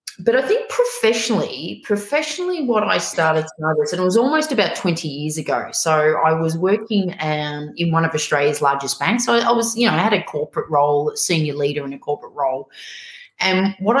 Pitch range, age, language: 145-210 Hz, 30-49, English